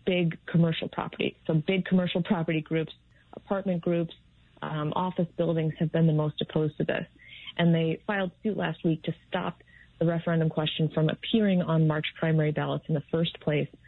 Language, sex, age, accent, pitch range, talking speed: English, female, 30-49, American, 155-180 Hz, 175 wpm